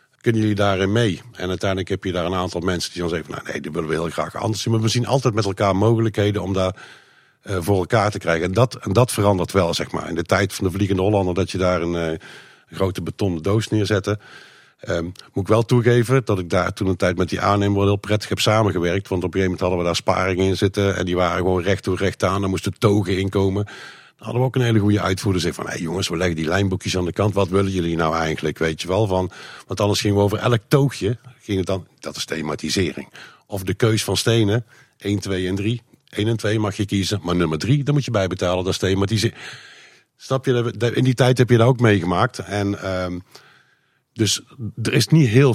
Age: 50-69